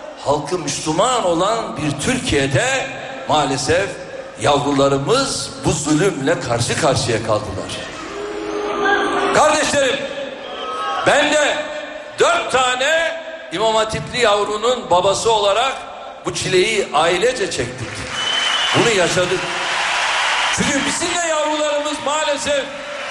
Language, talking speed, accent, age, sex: Turkish, 85 wpm, native, 60-79, male